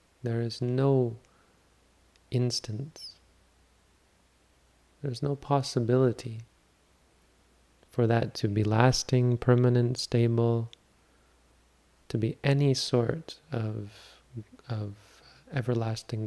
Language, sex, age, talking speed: English, male, 30-49, 75 wpm